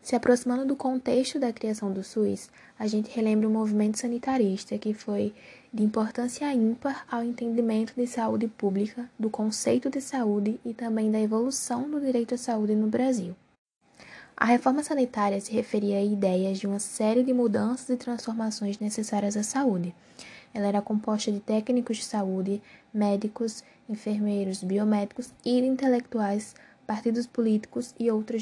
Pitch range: 210-245 Hz